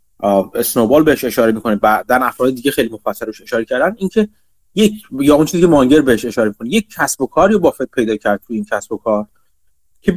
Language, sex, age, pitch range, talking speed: Persian, male, 30-49, 120-190 Hz, 210 wpm